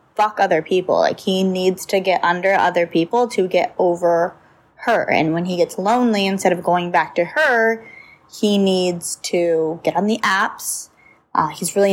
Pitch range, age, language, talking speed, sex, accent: 175-215 Hz, 20-39, English, 180 wpm, female, American